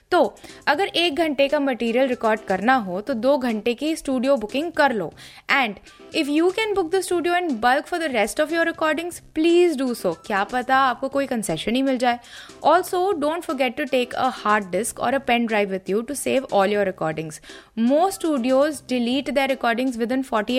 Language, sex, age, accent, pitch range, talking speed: Hindi, female, 20-39, native, 225-305 Hz, 205 wpm